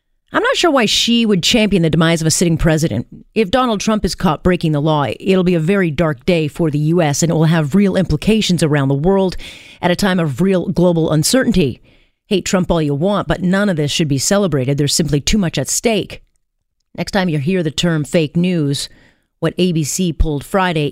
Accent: American